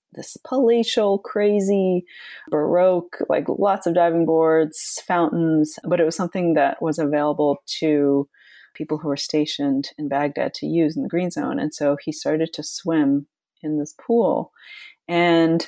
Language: English